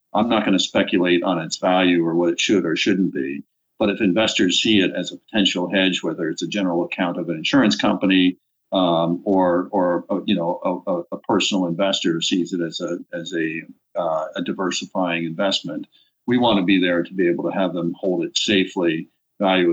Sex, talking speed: male, 205 wpm